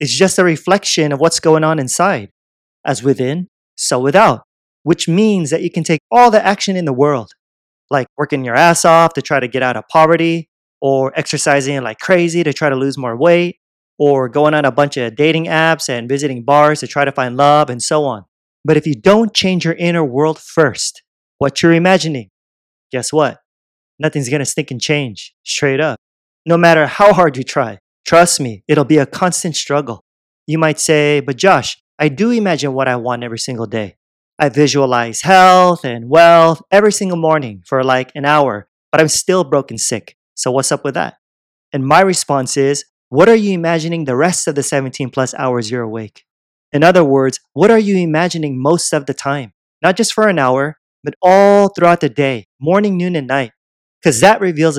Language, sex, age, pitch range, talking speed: English, male, 30-49, 130-170 Hz, 200 wpm